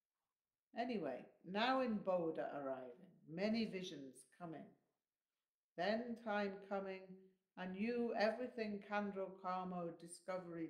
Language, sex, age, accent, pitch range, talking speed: English, female, 60-79, British, 165-210 Hz, 95 wpm